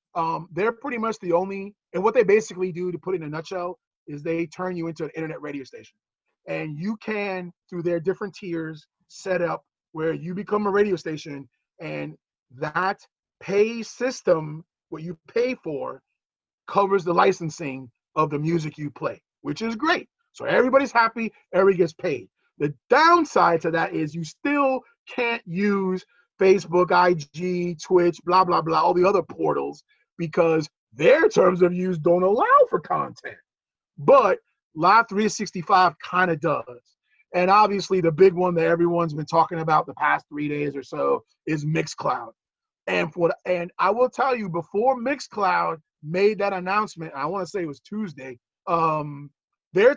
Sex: male